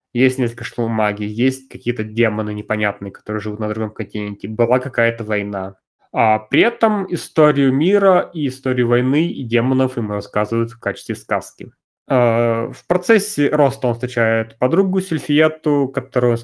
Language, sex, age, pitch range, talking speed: Russian, male, 20-39, 110-145 Hz, 140 wpm